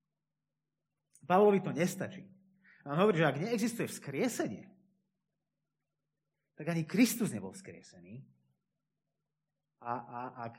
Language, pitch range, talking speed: Slovak, 135-180 Hz, 95 wpm